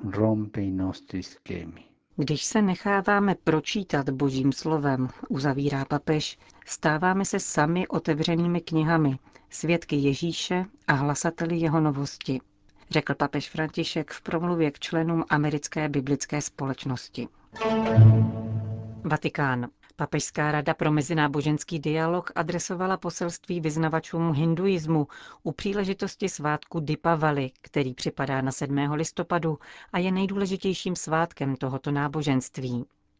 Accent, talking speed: native, 100 wpm